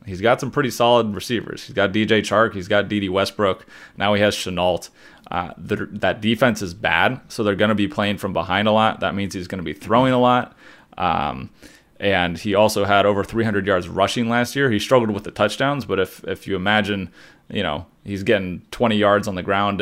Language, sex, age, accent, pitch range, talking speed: English, male, 30-49, American, 95-115 Hz, 220 wpm